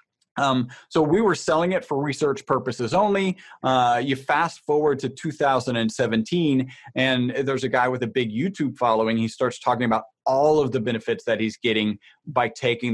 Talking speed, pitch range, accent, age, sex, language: 175 wpm, 120-140 Hz, American, 30-49, male, English